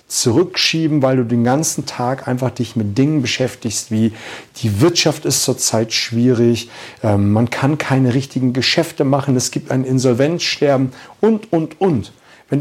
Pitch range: 130-175 Hz